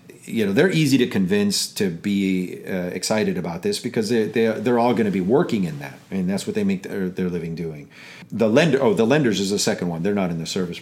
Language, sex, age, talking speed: English, male, 40-59, 255 wpm